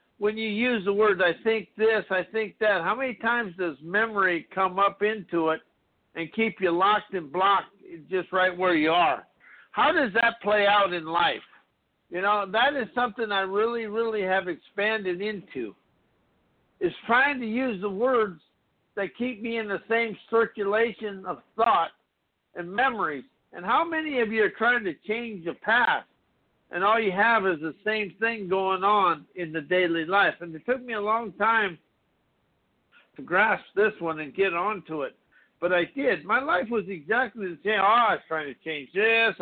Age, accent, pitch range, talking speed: 60-79, American, 180-225 Hz, 185 wpm